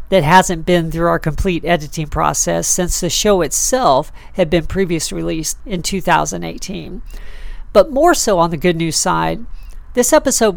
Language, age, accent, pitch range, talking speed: English, 50-69, American, 165-210 Hz, 160 wpm